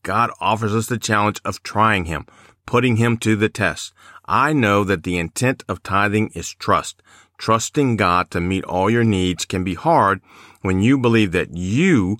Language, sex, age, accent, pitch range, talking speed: English, male, 40-59, American, 90-110 Hz, 180 wpm